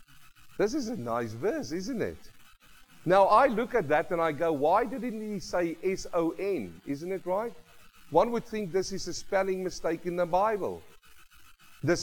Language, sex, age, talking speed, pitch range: English, male, 50-69, 175 wpm, 135-205 Hz